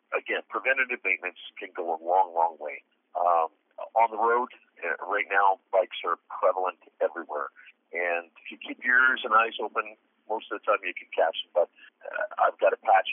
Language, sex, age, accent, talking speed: English, male, 50-69, American, 190 wpm